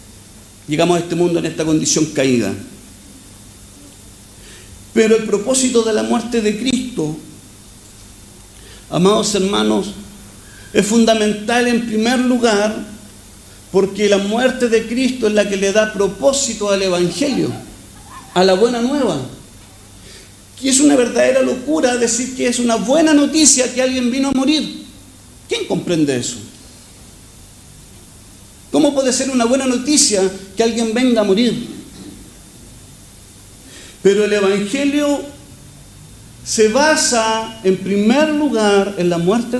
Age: 50-69